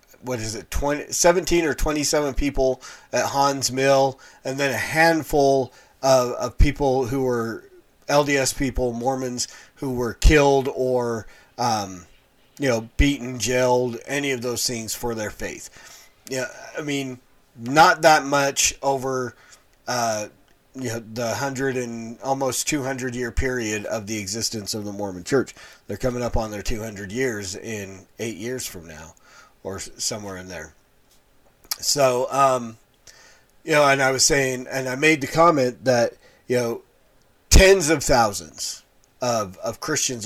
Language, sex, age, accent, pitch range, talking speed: English, male, 30-49, American, 120-145 Hz, 145 wpm